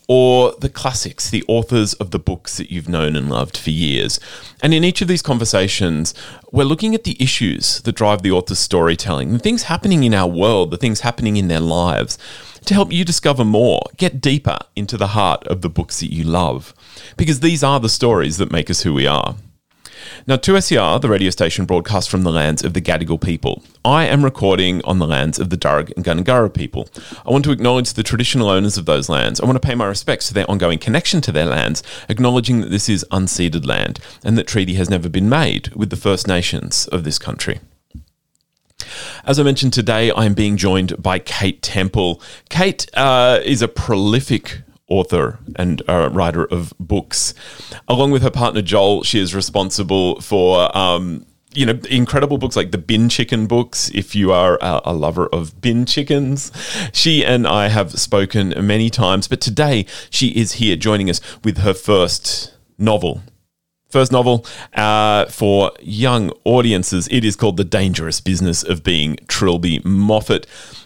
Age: 30-49